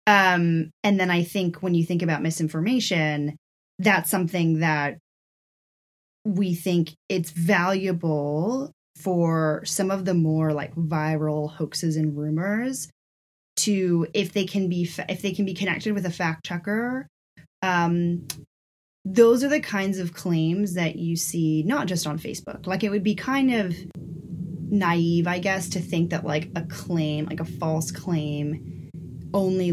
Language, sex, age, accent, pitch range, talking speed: English, female, 20-39, American, 155-185 Hz, 150 wpm